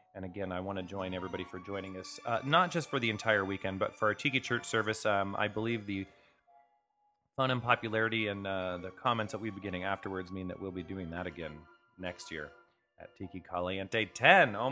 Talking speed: 215 wpm